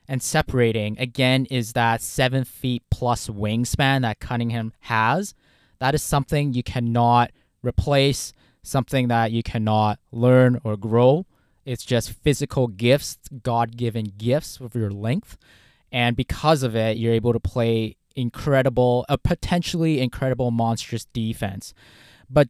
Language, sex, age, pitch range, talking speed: English, male, 20-39, 120-155 Hz, 130 wpm